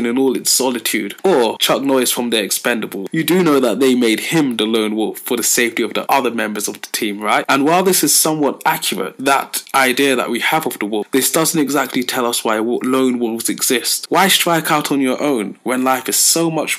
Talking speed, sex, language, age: 230 wpm, male, English, 20-39